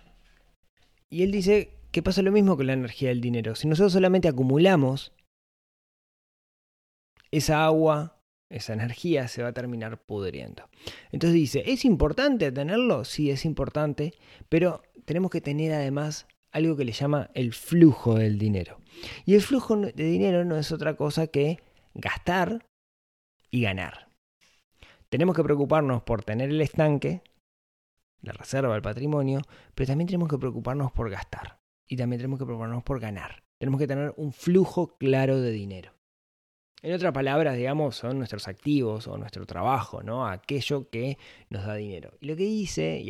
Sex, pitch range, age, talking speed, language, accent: male, 110-155 Hz, 20-39, 155 wpm, Spanish, Argentinian